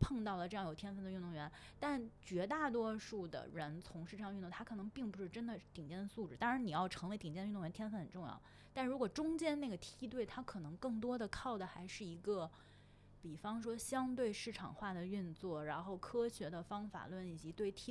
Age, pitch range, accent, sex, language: 20-39, 170-225 Hz, native, female, Chinese